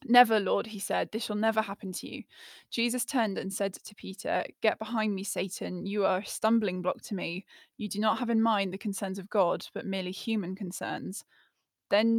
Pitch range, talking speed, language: 185-220 Hz, 205 wpm, English